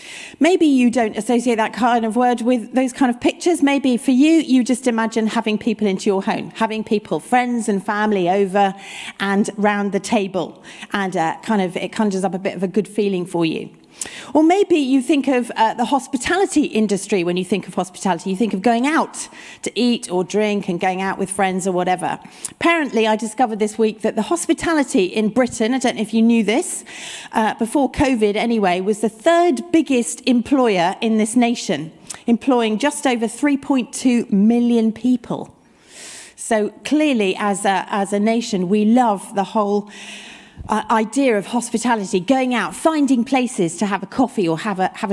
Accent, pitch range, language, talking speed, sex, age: British, 195-245 Hz, English, 185 wpm, female, 40-59